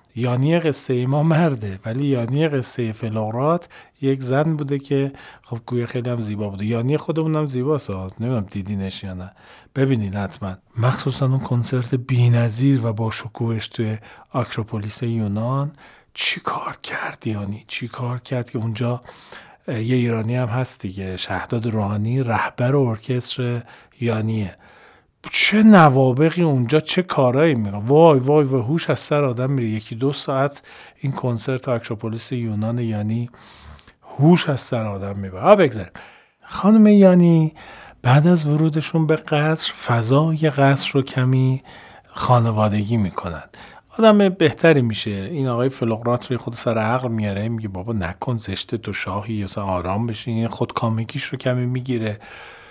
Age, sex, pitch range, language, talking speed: 40-59, male, 110-140 Hz, Persian, 140 wpm